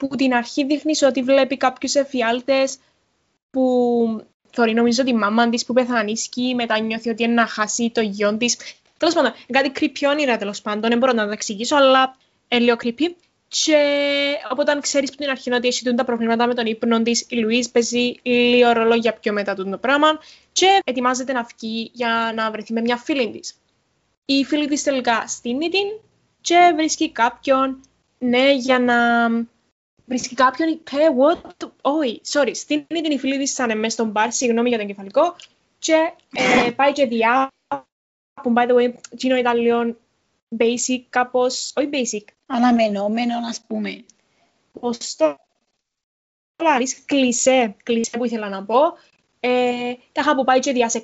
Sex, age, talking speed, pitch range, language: female, 20-39, 155 wpm, 235-290 Hz, Greek